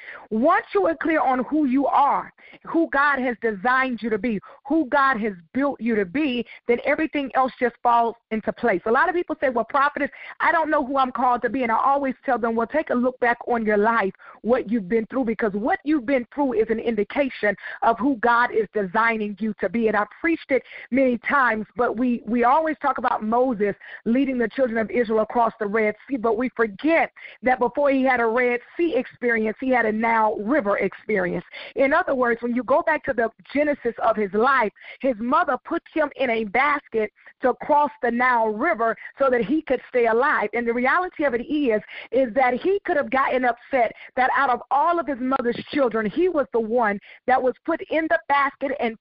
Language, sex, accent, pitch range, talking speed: English, female, American, 230-285 Hz, 220 wpm